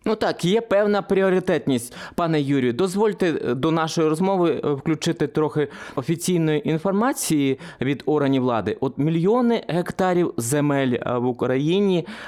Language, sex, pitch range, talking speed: Ukrainian, male, 115-160 Hz, 115 wpm